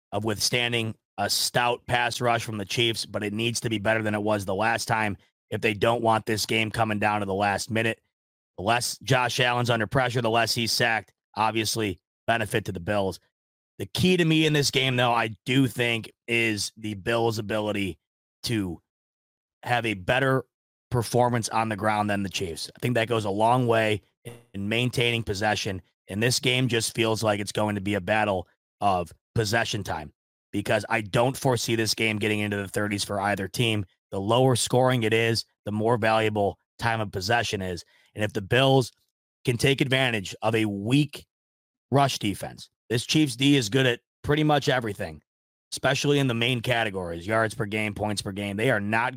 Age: 30-49